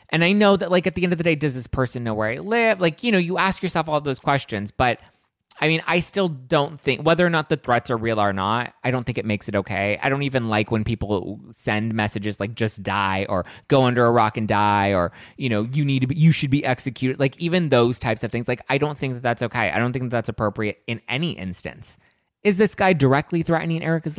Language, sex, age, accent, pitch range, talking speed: English, male, 20-39, American, 100-145 Hz, 265 wpm